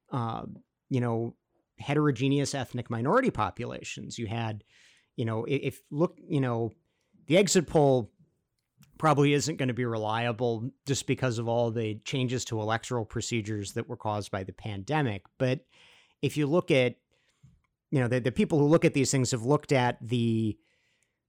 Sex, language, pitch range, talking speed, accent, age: male, English, 115-145 Hz, 165 wpm, American, 40-59